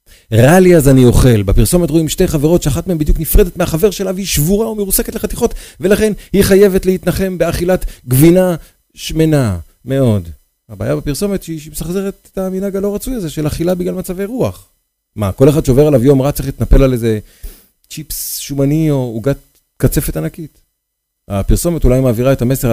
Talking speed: 165 wpm